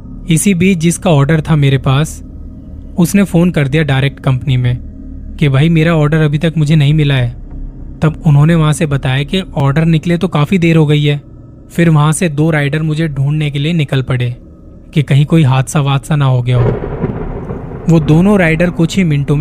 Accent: native